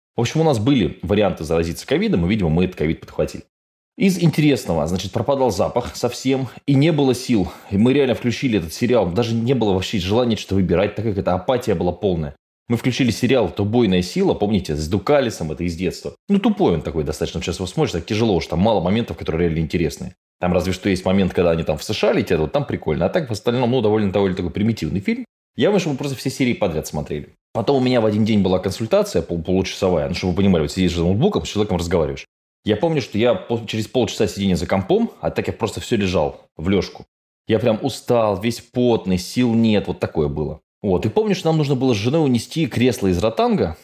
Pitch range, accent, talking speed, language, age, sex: 90-130 Hz, native, 225 wpm, Russian, 20-39, male